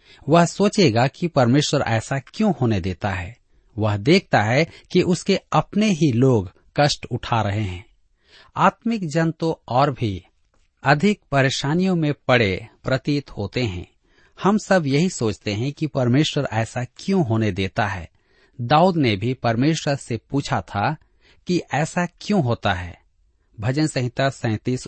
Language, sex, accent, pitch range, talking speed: Hindi, male, native, 110-160 Hz, 145 wpm